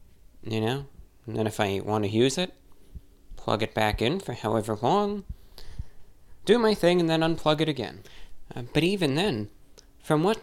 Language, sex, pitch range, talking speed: English, male, 105-150 Hz, 180 wpm